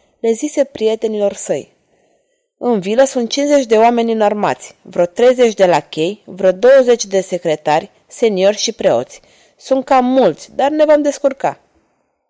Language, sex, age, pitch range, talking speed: Romanian, female, 20-39, 185-250 Hz, 140 wpm